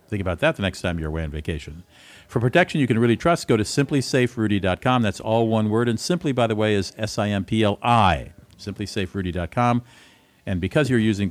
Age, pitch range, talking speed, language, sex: 50-69, 95-135 Hz, 185 wpm, English, male